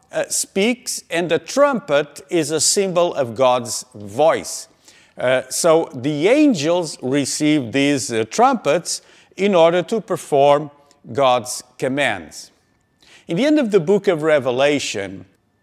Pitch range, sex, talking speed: 145-205 Hz, male, 125 wpm